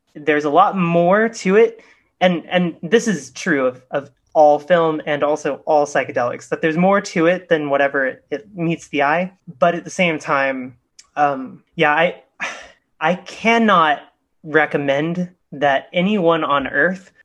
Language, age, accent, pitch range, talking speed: English, 20-39, American, 145-175 Hz, 160 wpm